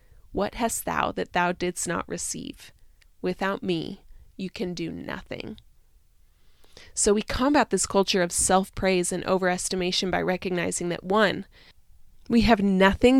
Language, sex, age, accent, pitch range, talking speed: English, female, 20-39, American, 180-215 Hz, 135 wpm